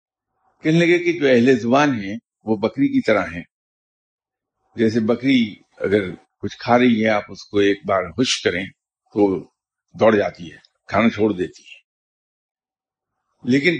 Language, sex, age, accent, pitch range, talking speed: English, male, 50-69, Indian, 105-140 Hz, 150 wpm